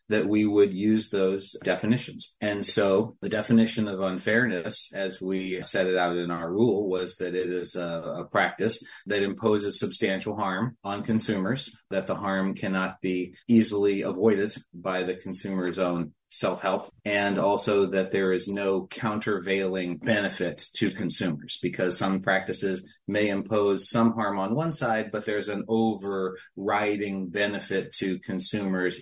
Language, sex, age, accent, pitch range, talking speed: English, male, 30-49, American, 90-105 Hz, 150 wpm